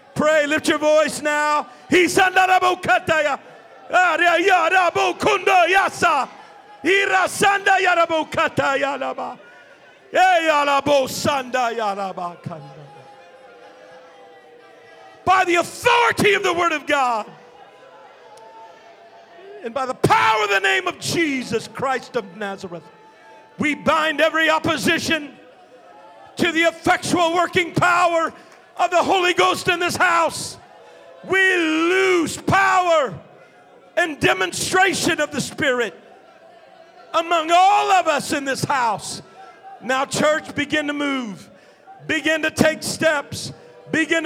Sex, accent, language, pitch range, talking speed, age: male, American, English, 280-345 Hz, 90 wpm, 50-69